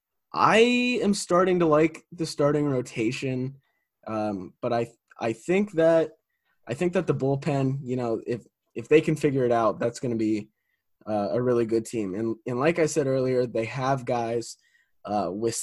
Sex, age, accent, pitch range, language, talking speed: male, 20-39, American, 110-135 Hz, English, 190 wpm